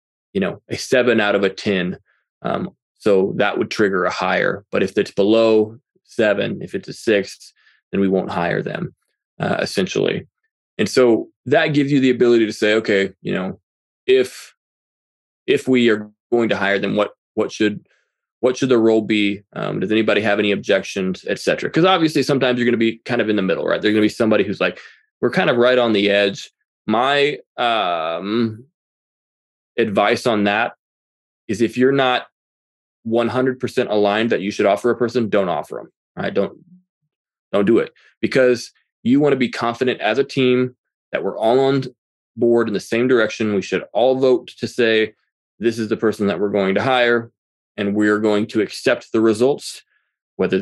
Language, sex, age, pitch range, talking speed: English, male, 20-39, 105-125 Hz, 195 wpm